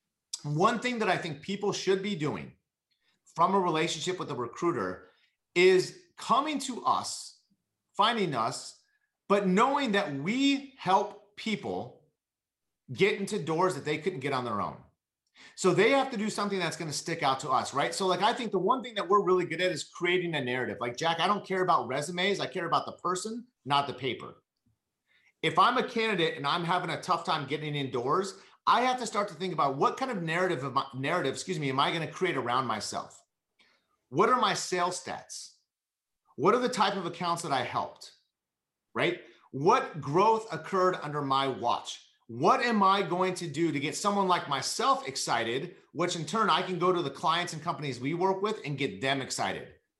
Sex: male